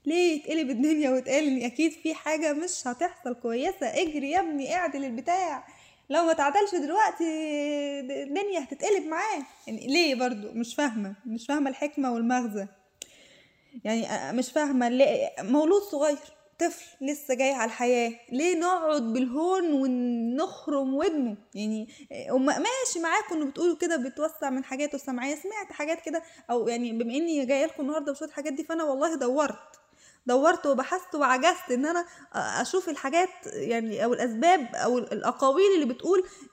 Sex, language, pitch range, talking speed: female, Arabic, 245-330 Hz, 145 wpm